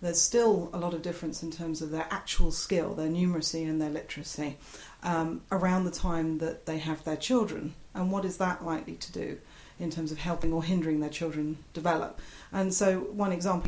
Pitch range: 155-180 Hz